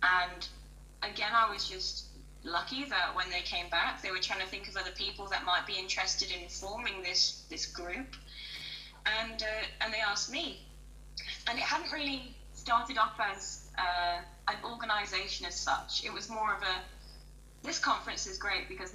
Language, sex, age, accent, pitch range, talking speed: English, female, 10-29, British, 180-220 Hz, 175 wpm